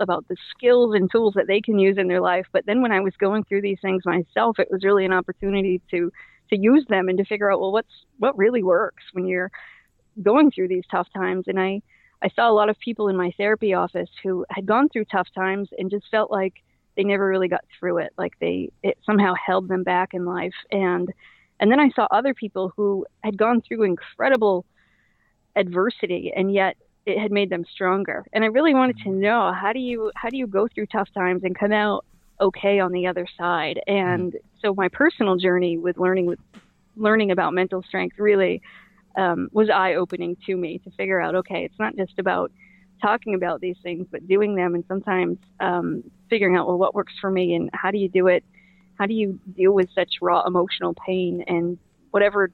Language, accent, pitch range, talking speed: English, American, 185-210 Hz, 215 wpm